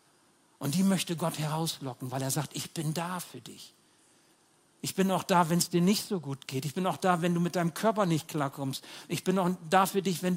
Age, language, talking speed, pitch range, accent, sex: 60-79, German, 245 wpm, 150-190 Hz, German, male